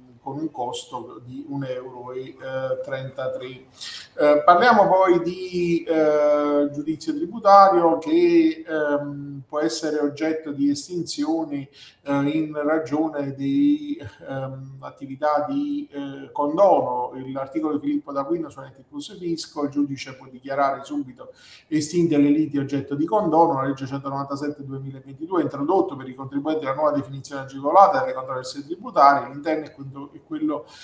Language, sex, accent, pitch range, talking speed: Italian, male, native, 135-160 Hz, 130 wpm